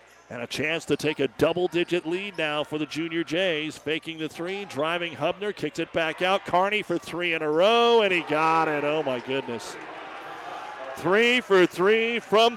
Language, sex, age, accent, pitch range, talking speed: English, male, 50-69, American, 125-165 Hz, 185 wpm